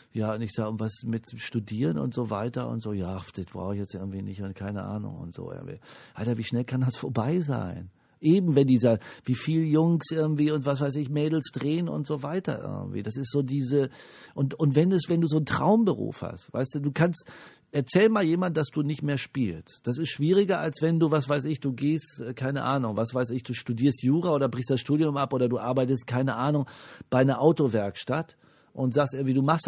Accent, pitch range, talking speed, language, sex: German, 115-150 Hz, 230 wpm, German, male